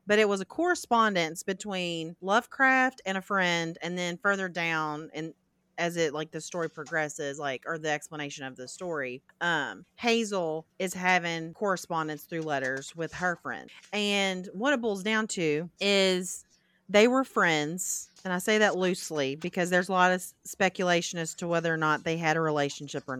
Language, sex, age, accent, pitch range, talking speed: English, female, 30-49, American, 160-195 Hz, 180 wpm